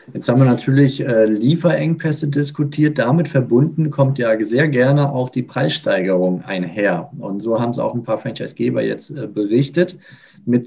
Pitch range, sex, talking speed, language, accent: 120-145 Hz, male, 165 wpm, German, German